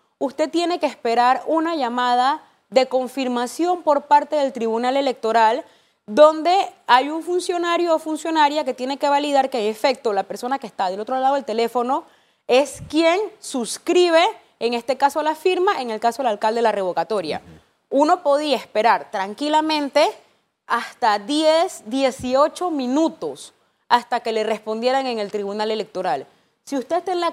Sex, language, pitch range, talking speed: female, Spanish, 230-300 Hz, 155 wpm